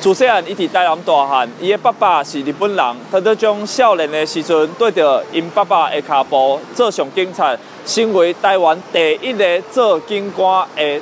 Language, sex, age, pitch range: Chinese, male, 20-39, 165-225 Hz